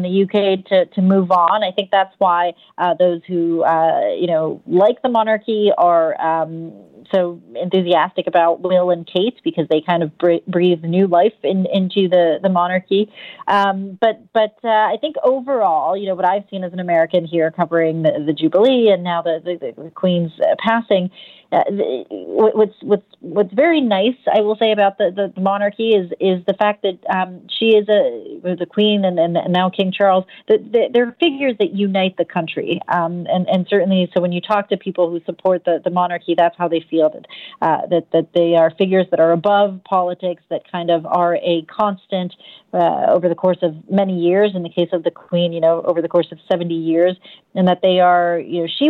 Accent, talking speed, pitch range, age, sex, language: American, 205 wpm, 170-200 Hz, 30-49, female, English